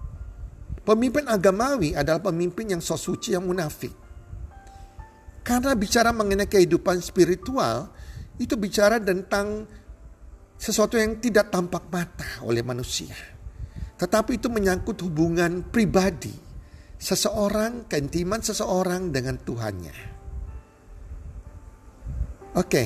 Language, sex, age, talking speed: Indonesian, male, 50-69, 90 wpm